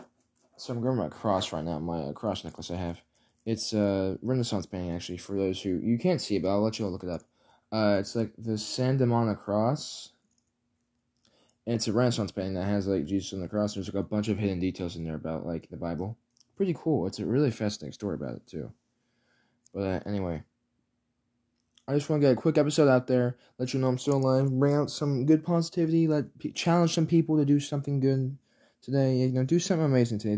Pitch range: 100-130 Hz